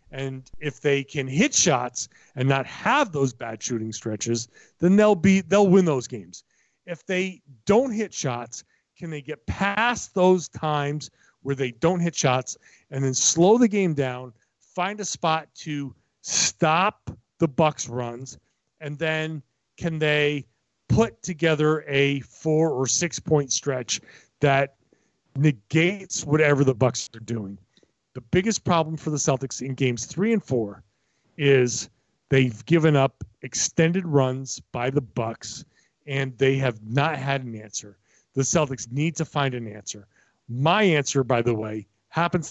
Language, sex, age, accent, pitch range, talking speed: English, male, 40-59, American, 125-160 Hz, 150 wpm